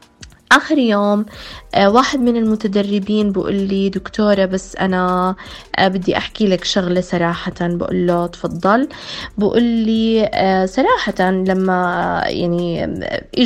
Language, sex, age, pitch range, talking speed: Arabic, female, 20-39, 180-215 Hz, 105 wpm